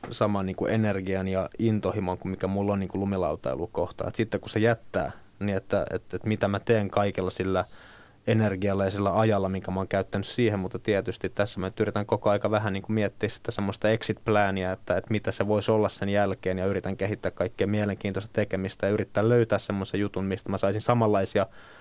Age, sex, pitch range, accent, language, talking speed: 20-39, male, 95-110 Hz, native, Finnish, 195 wpm